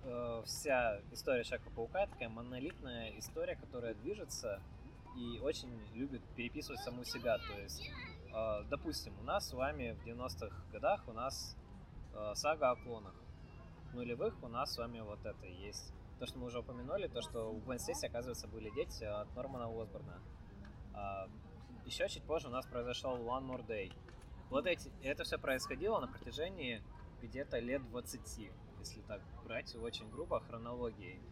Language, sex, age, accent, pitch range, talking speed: Russian, male, 20-39, native, 105-125 Hz, 145 wpm